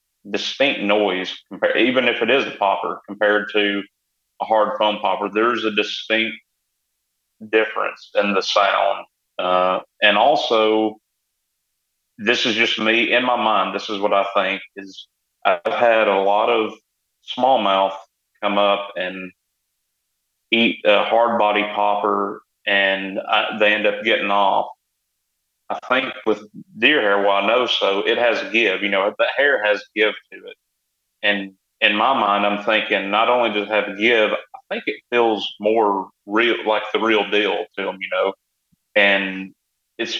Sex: male